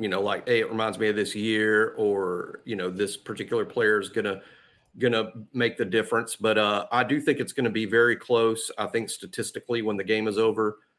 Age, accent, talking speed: 40-59, American, 230 wpm